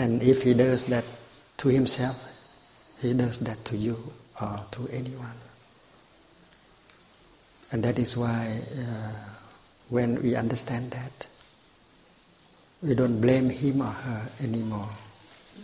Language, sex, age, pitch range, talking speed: English, male, 60-79, 115-130 Hz, 120 wpm